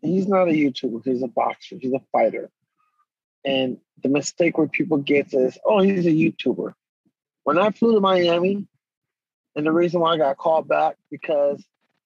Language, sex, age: English, male, 20-39